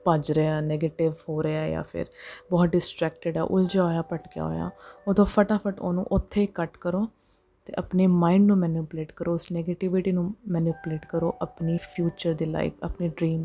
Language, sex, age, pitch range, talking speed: Punjabi, female, 20-39, 165-190 Hz, 170 wpm